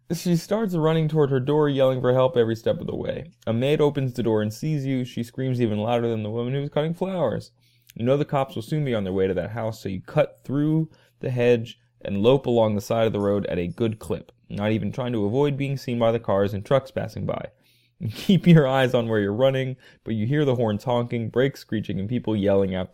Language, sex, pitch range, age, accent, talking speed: English, male, 105-135 Hz, 20-39, American, 255 wpm